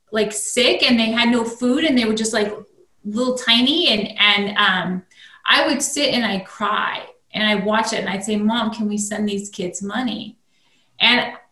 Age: 30-49